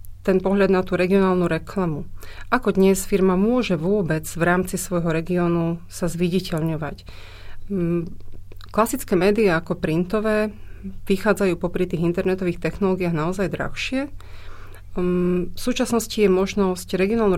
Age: 30-49